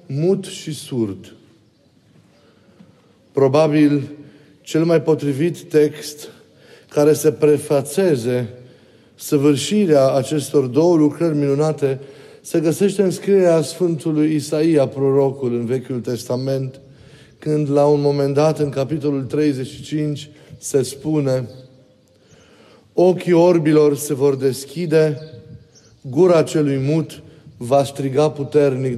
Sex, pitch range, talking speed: male, 130-155 Hz, 95 wpm